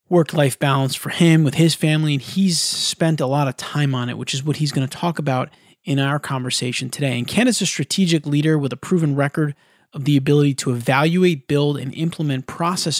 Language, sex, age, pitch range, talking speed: English, male, 30-49, 135-165 Hz, 215 wpm